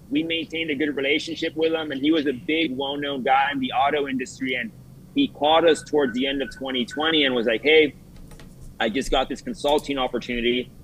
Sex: male